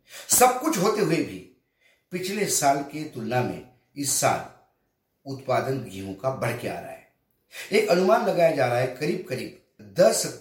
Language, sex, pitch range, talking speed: Hindi, male, 125-170 Hz, 160 wpm